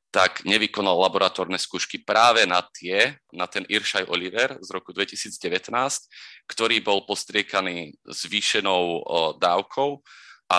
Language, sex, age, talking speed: Slovak, male, 30-49, 115 wpm